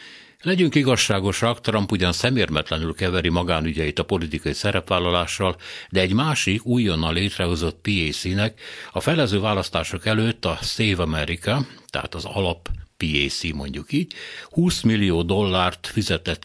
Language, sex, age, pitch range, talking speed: Hungarian, male, 60-79, 85-110 Hz, 120 wpm